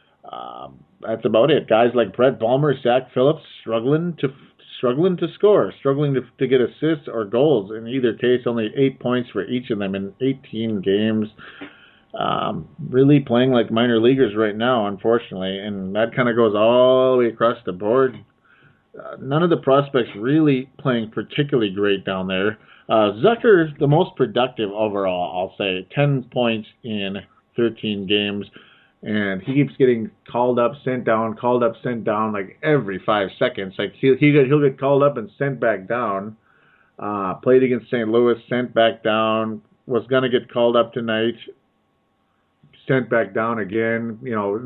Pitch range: 110-135 Hz